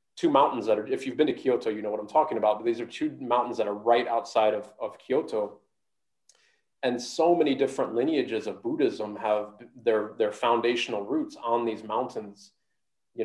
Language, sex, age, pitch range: English, male, 30-49, 110-130 Hz